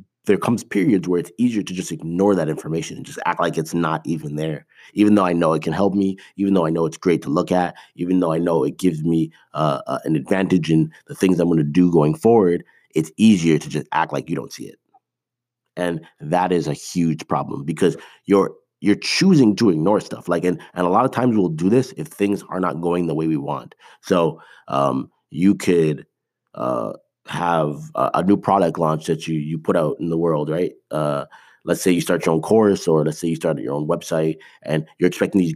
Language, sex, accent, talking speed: English, male, American, 235 wpm